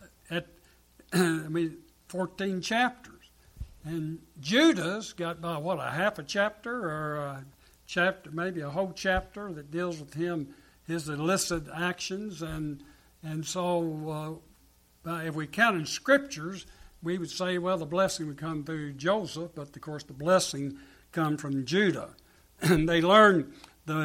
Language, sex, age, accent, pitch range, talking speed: English, male, 60-79, American, 150-185 Hz, 145 wpm